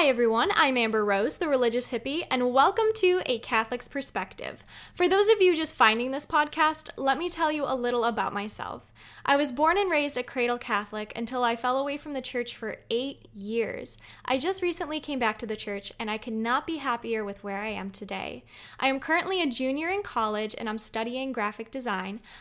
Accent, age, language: American, 10-29, English